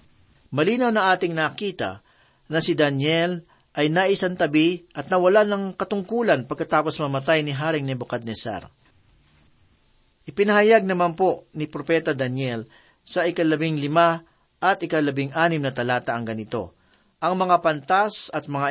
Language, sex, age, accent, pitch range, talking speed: Filipino, male, 40-59, native, 140-185 Hz, 125 wpm